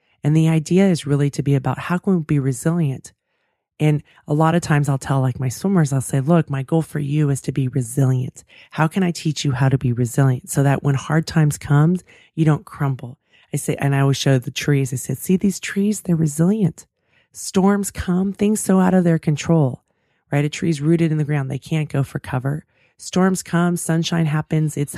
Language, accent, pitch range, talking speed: English, American, 140-165 Hz, 220 wpm